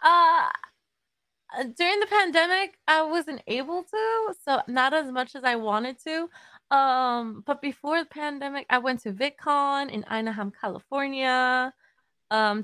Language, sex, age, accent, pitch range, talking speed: English, female, 20-39, American, 185-240 Hz, 140 wpm